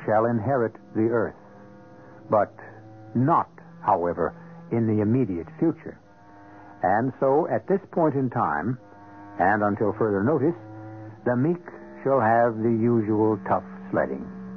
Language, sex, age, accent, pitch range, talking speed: English, male, 60-79, American, 105-155 Hz, 125 wpm